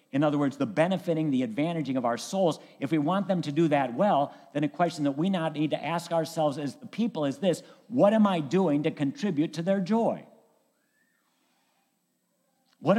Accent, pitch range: American, 140-195 Hz